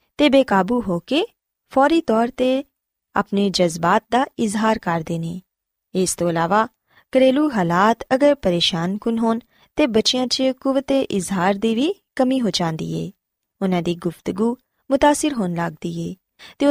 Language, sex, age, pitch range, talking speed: Punjabi, female, 20-39, 180-255 Hz, 140 wpm